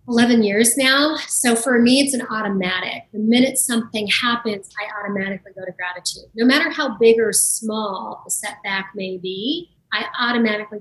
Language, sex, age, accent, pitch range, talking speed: English, female, 30-49, American, 195-230 Hz, 165 wpm